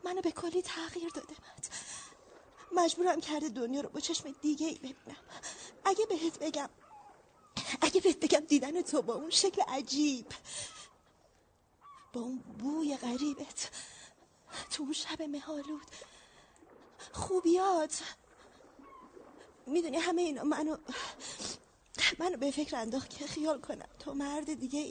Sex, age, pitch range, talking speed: female, 30-49, 280-350 Hz, 115 wpm